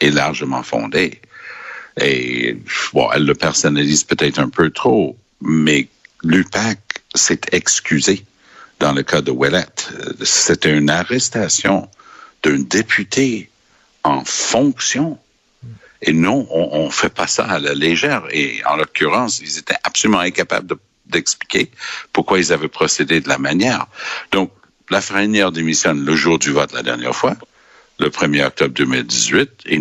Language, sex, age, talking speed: French, male, 60-79, 140 wpm